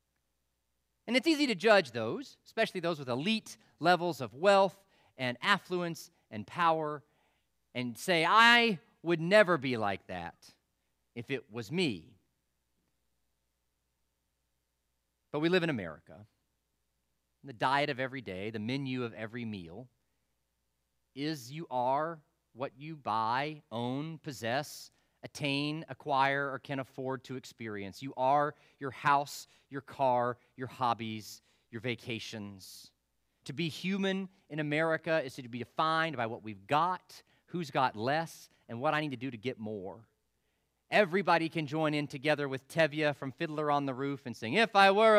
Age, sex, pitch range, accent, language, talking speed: 40-59, male, 110-160 Hz, American, English, 145 wpm